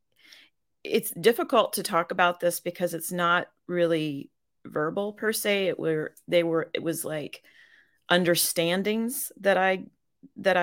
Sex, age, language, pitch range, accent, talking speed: female, 40-59, English, 160-190 Hz, American, 135 wpm